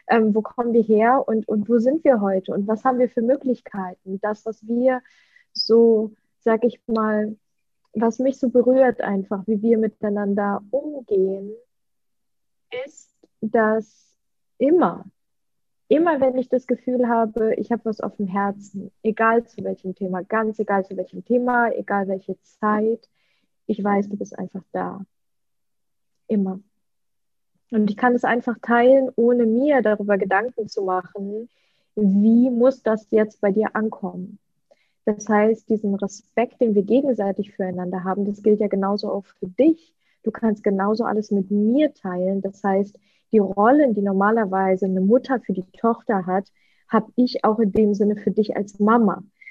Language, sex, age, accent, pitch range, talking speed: German, female, 20-39, German, 200-240 Hz, 160 wpm